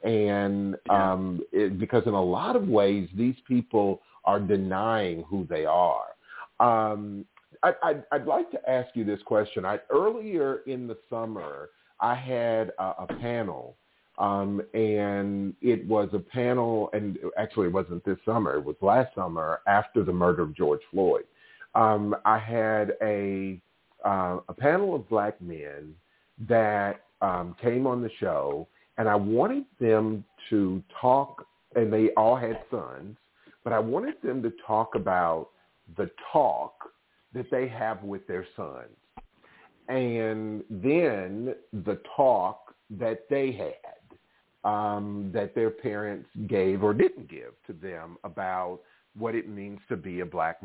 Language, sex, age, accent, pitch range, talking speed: English, male, 40-59, American, 100-115 Hz, 145 wpm